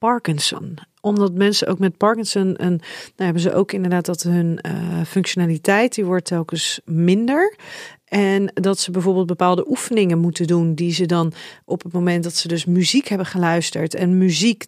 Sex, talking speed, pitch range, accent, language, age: female, 165 wpm, 180-215 Hz, Dutch, Dutch, 40-59